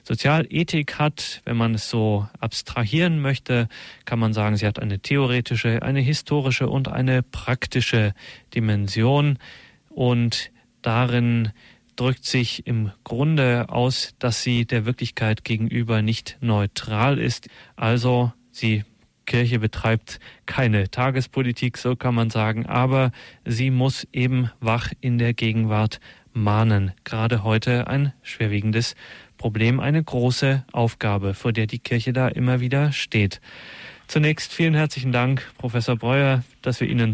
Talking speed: 130 wpm